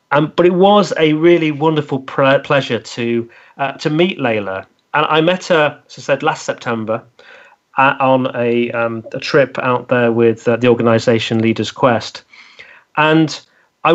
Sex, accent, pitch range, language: male, British, 120-150 Hz, English